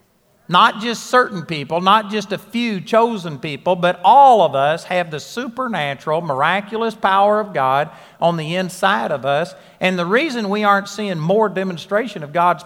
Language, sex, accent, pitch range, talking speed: English, male, American, 180-230 Hz, 170 wpm